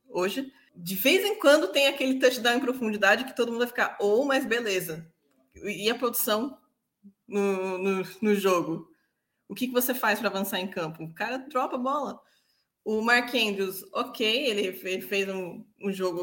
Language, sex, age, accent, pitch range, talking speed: English, female, 20-39, Brazilian, 185-255 Hz, 180 wpm